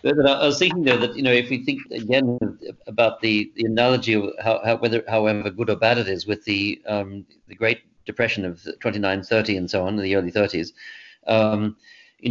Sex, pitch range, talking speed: male, 110-125 Hz, 215 wpm